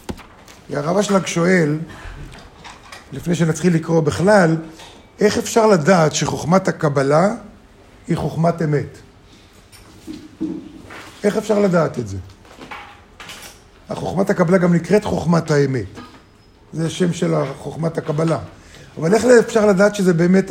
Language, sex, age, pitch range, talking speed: Hebrew, male, 50-69, 150-200 Hz, 110 wpm